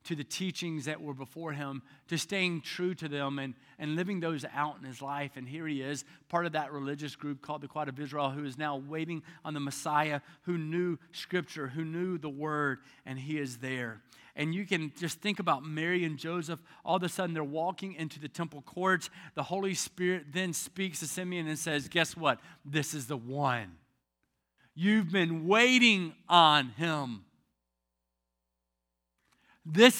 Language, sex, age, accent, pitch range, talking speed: English, male, 40-59, American, 145-195 Hz, 185 wpm